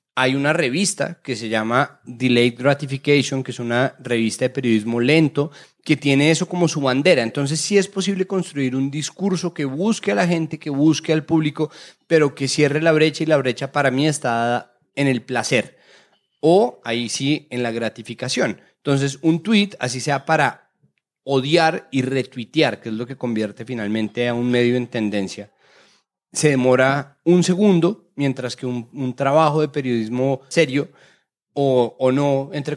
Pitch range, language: 120-150 Hz, Spanish